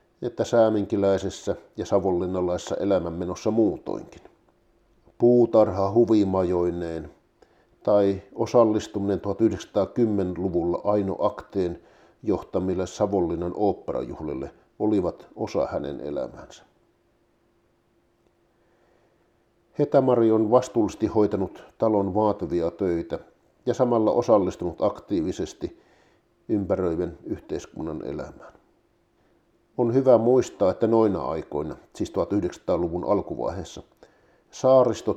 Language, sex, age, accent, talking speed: Finnish, male, 50-69, native, 75 wpm